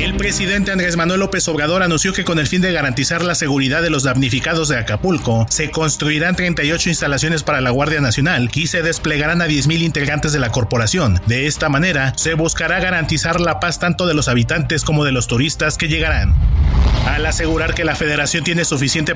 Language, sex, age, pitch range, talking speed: Spanish, male, 40-59, 135-170 Hz, 195 wpm